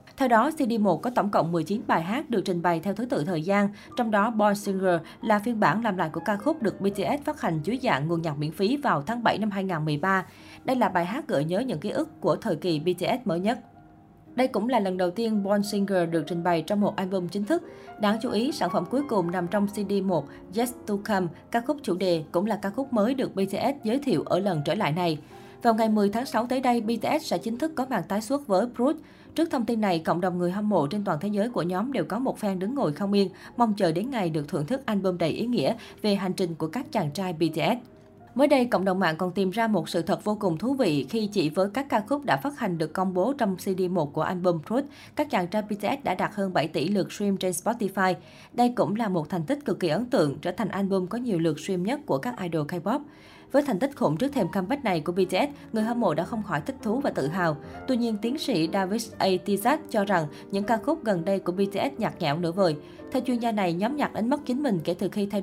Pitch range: 180-235 Hz